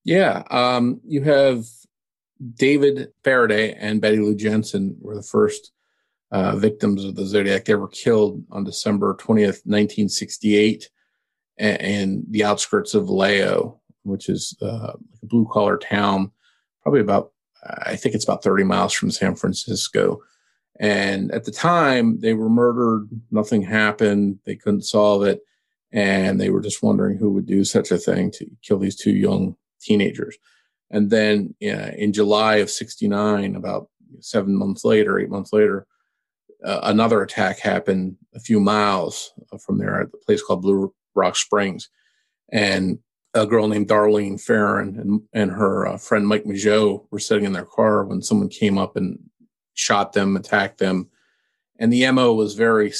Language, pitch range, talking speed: English, 100-115 Hz, 160 wpm